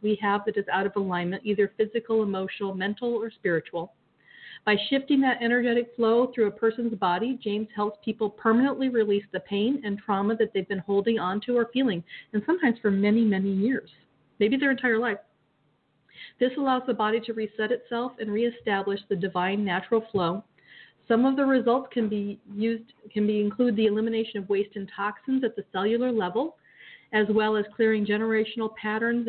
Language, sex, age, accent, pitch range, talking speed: English, female, 40-59, American, 200-235 Hz, 180 wpm